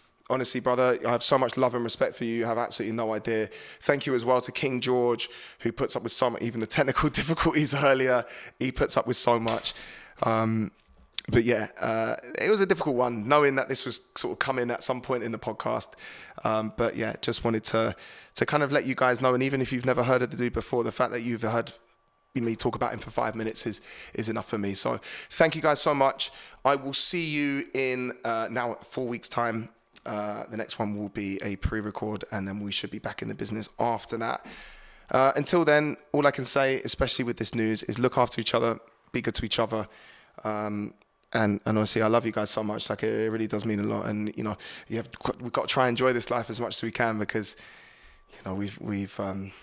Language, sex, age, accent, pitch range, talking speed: English, male, 20-39, British, 110-125 Hz, 240 wpm